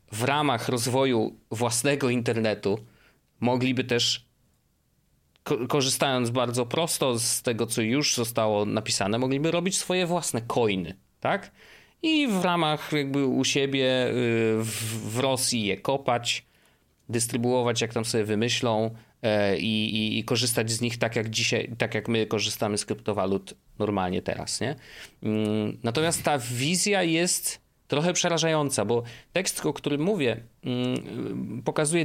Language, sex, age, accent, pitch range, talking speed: Polish, male, 30-49, native, 115-140 Hz, 125 wpm